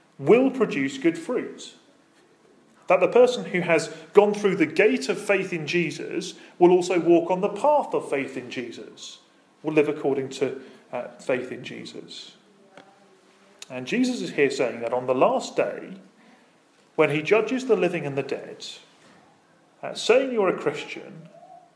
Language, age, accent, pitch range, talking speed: English, 30-49, British, 150-225 Hz, 160 wpm